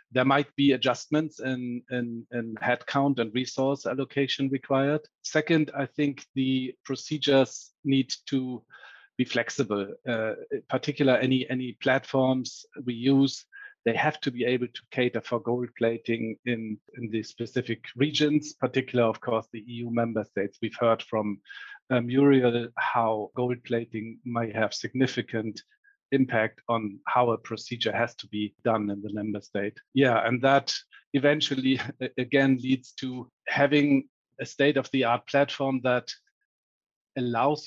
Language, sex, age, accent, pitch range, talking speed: English, male, 50-69, German, 120-140 Hz, 140 wpm